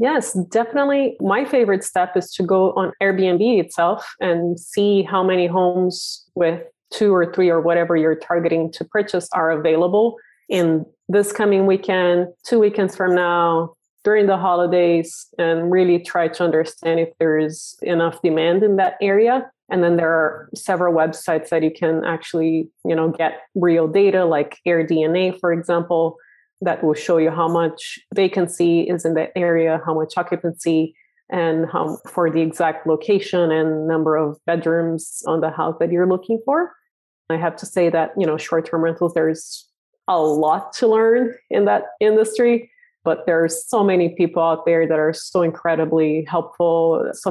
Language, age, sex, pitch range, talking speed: English, 30-49, female, 165-190 Hz, 170 wpm